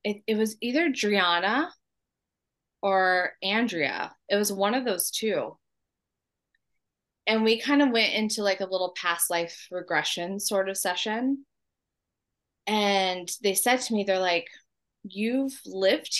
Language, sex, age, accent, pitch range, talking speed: English, female, 20-39, American, 180-225 Hz, 135 wpm